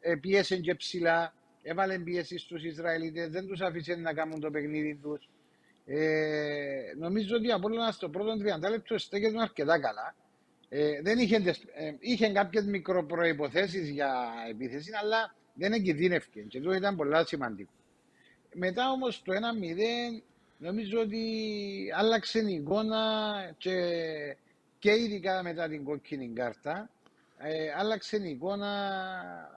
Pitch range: 145-200 Hz